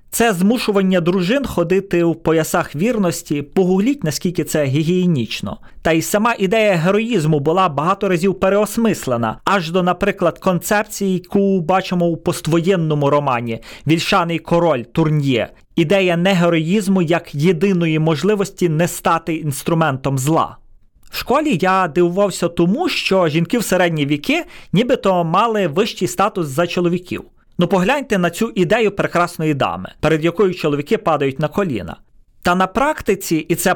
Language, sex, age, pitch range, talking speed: Ukrainian, male, 30-49, 160-205 Hz, 135 wpm